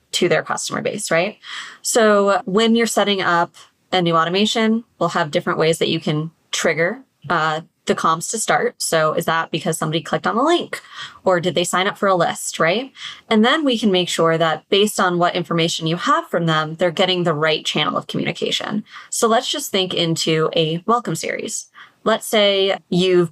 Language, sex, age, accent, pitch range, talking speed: English, female, 20-39, American, 165-210 Hz, 200 wpm